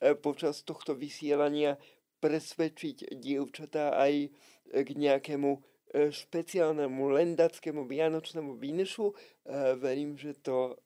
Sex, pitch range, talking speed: male, 140-170 Hz, 85 wpm